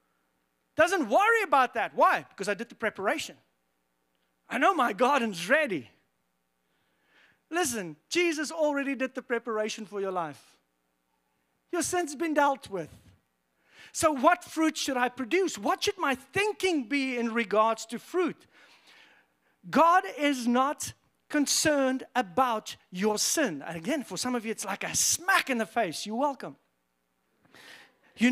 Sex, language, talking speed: male, English, 140 wpm